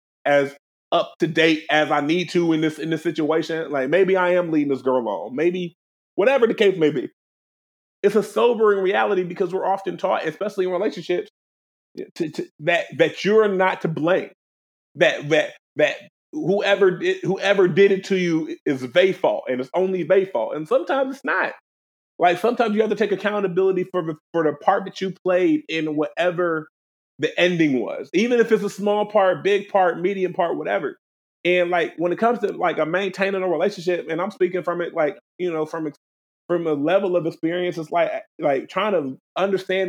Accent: American